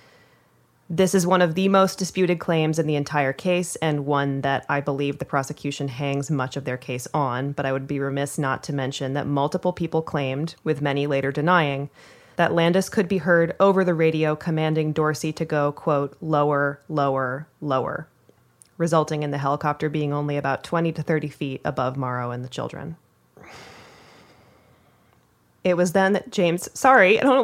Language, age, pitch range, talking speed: English, 20-39, 140-175 Hz, 175 wpm